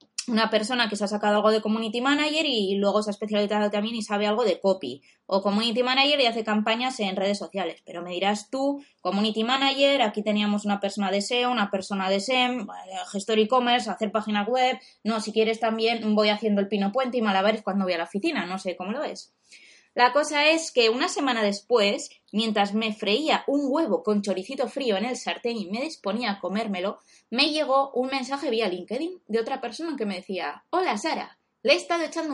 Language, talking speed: Spanish, 210 wpm